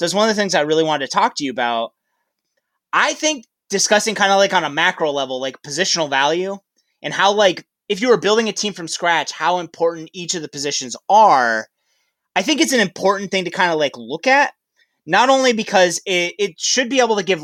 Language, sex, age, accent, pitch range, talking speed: English, male, 30-49, American, 145-205 Hz, 230 wpm